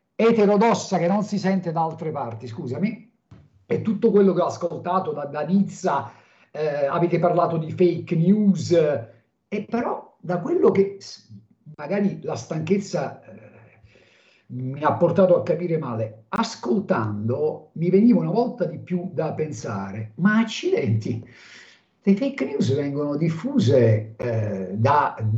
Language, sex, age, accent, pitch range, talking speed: Italian, male, 50-69, native, 150-215 Hz, 135 wpm